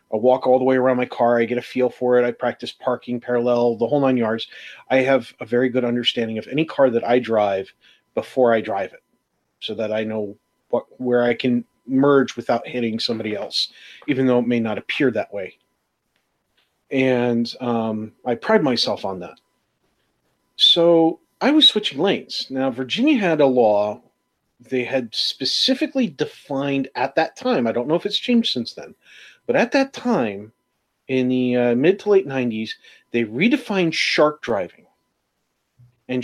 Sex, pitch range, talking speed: male, 120-165 Hz, 175 wpm